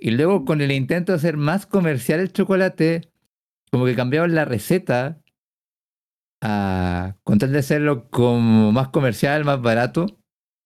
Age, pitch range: 50-69, 120-155 Hz